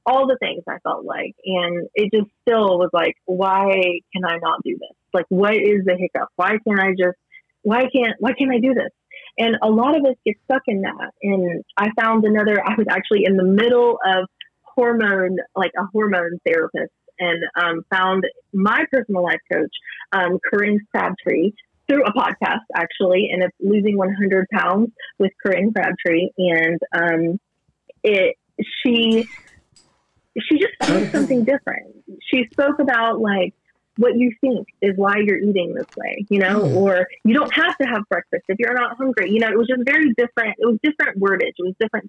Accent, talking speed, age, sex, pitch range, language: American, 185 wpm, 30-49, female, 185-235 Hz, English